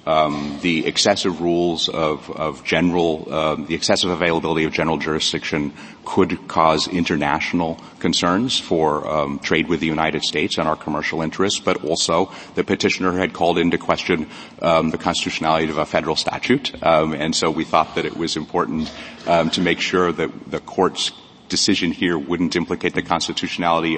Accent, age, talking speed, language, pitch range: American, 40-59, 165 wpm, English, 80-85 Hz